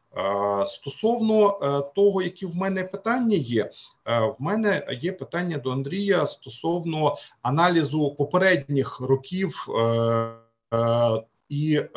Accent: native